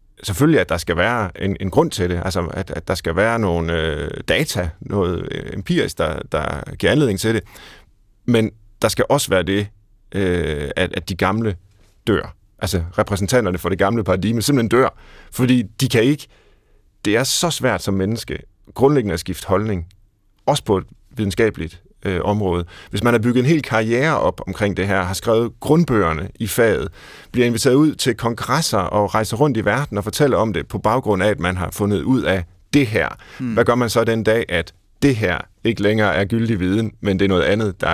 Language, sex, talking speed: Danish, male, 200 wpm